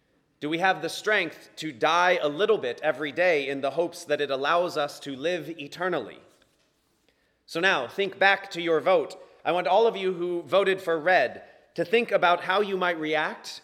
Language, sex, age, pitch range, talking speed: English, male, 30-49, 160-200 Hz, 200 wpm